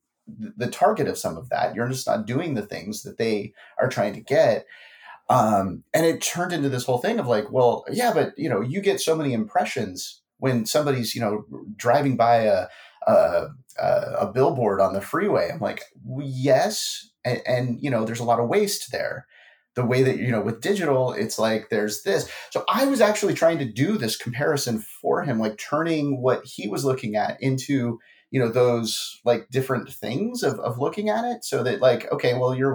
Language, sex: English, male